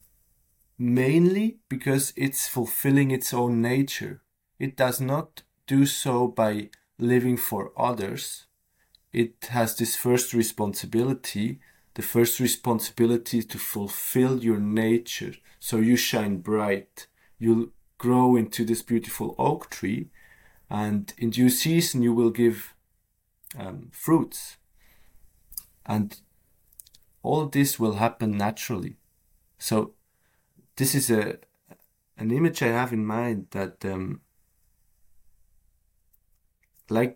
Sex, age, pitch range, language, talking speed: male, 30-49, 105-125 Hz, English, 110 wpm